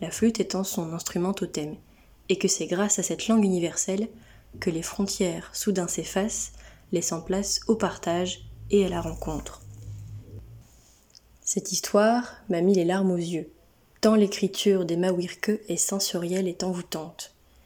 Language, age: French, 20-39